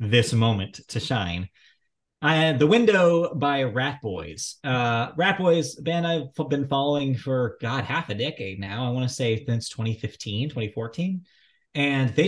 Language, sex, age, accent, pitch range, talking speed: English, male, 20-39, American, 110-140 Hz, 160 wpm